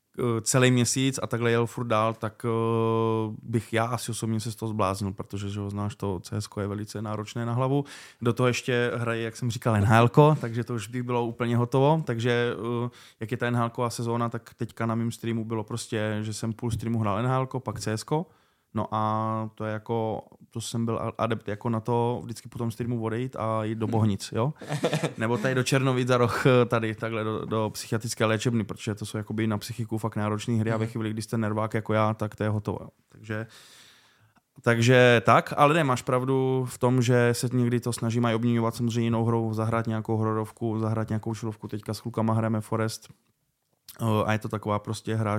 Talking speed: 200 wpm